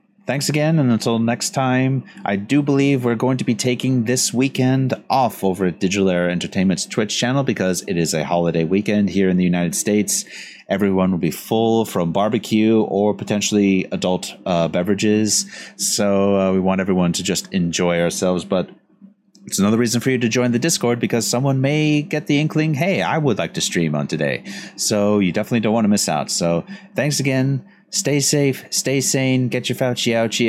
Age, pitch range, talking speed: 30-49, 100-130 Hz, 195 wpm